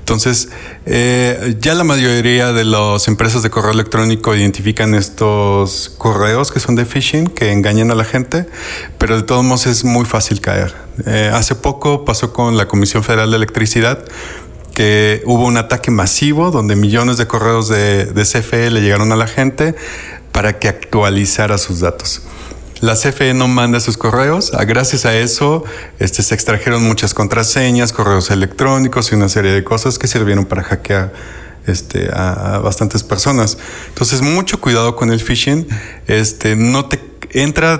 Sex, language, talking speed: male, Spanish, 160 wpm